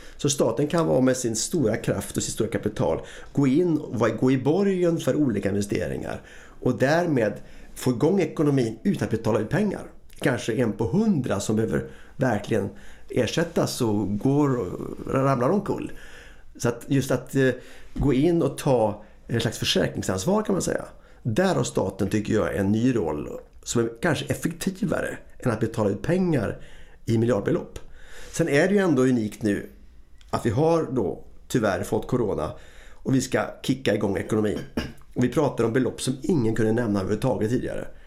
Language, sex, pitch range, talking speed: Swedish, male, 105-145 Hz, 170 wpm